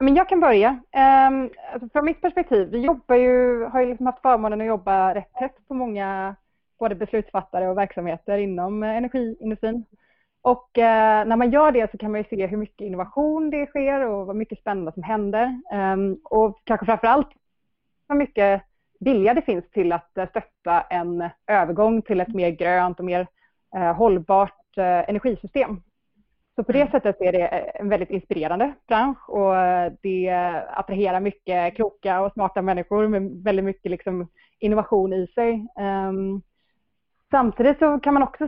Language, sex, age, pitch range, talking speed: Swedish, female, 30-49, 190-245 Hz, 165 wpm